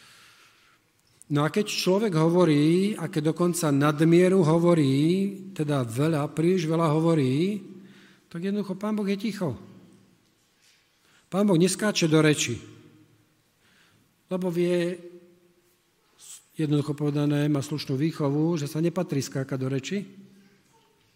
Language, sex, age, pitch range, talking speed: Slovak, male, 50-69, 145-175 Hz, 110 wpm